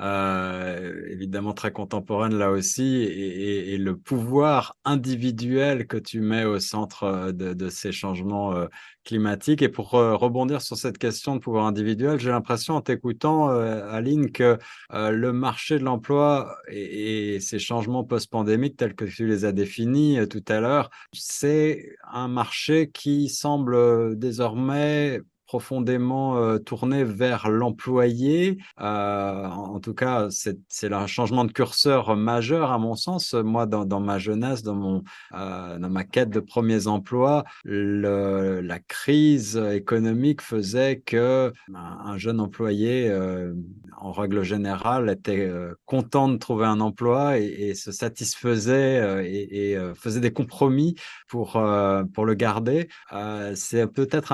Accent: French